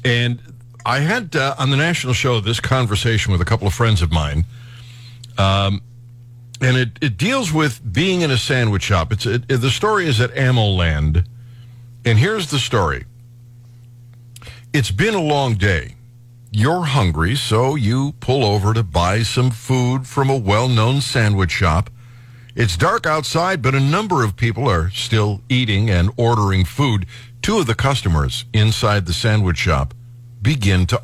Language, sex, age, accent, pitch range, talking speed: English, male, 60-79, American, 115-135 Hz, 165 wpm